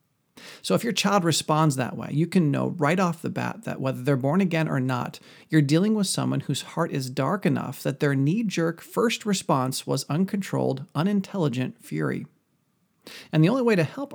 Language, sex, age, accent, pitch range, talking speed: English, male, 40-59, American, 130-165 Hz, 190 wpm